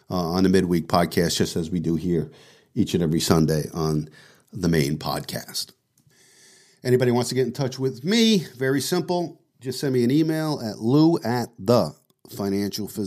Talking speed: 175 wpm